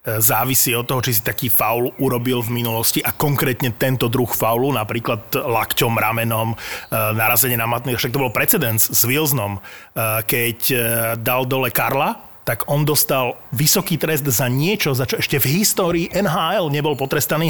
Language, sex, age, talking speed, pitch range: Slovak, male, 30-49, 160 wpm, 120-150 Hz